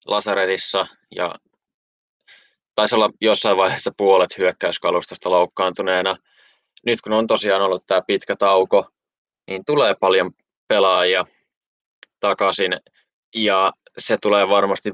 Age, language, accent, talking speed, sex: 20-39, Finnish, native, 105 wpm, male